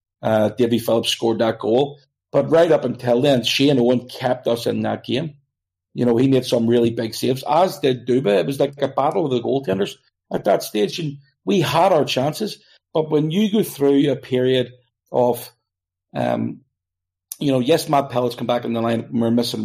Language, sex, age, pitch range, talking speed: English, male, 40-59, 115-140 Hz, 200 wpm